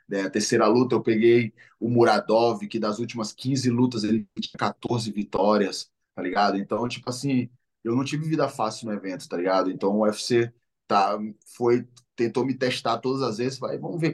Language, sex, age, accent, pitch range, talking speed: English, male, 10-29, Brazilian, 100-115 Hz, 185 wpm